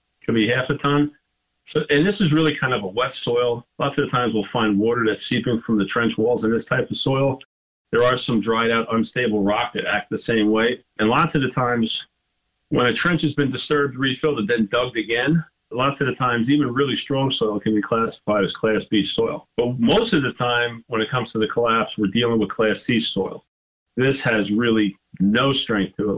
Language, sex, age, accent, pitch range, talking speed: English, male, 40-59, American, 105-130 Hz, 230 wpm